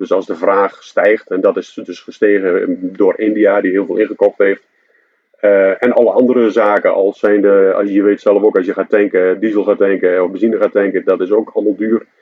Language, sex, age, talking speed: Dutch, male, 40-59, 220 wpm